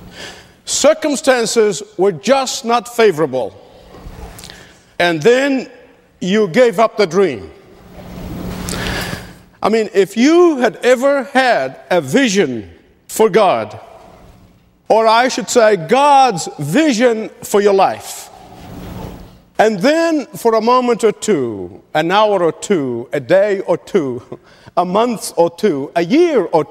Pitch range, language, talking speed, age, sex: 195-260 Hz, English, 120 wpm, 50-69, male